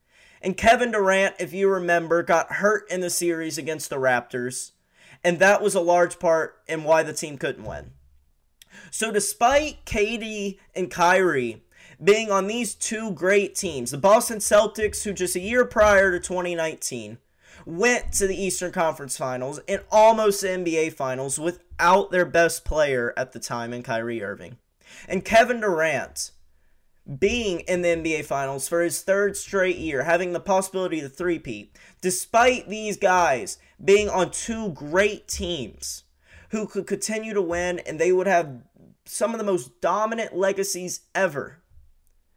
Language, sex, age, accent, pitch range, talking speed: English, male, 20-39, American, 160-205 Hz, 155 wpm